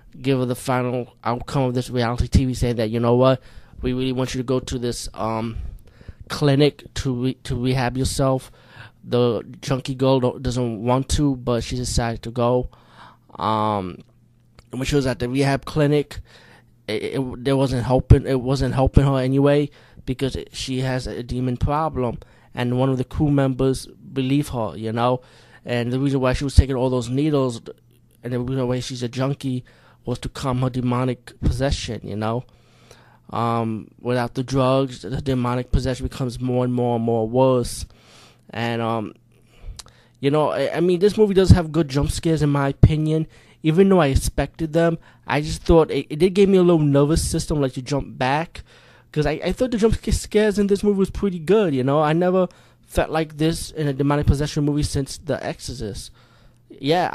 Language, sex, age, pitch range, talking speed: English, male, 20-39, 120-145 Hz, 190 wpm